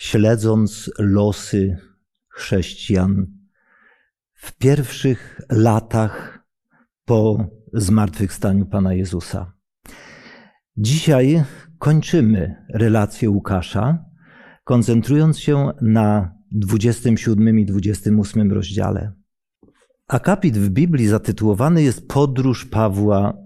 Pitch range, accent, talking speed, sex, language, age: 100-120 Hz, native, 70 wpm, male, Polish, 50-69